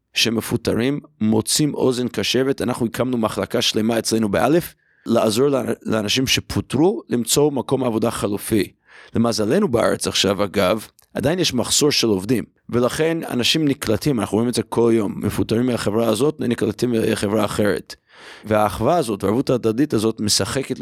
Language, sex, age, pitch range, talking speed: Hebrew, male, 30-49, 105-130 Hz, 135 wpm